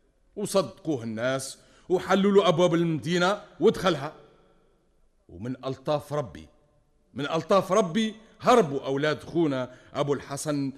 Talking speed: 95 wpm